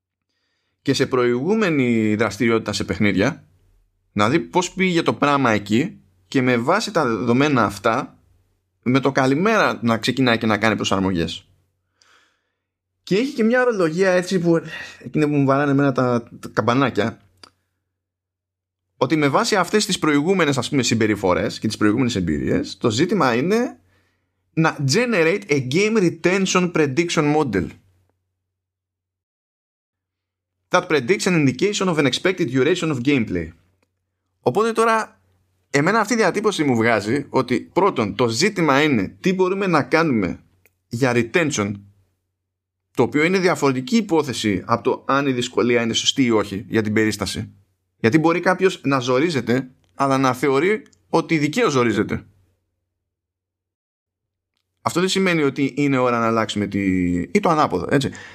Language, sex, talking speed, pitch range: Greek, male, 140 wpm, 95-155 Hz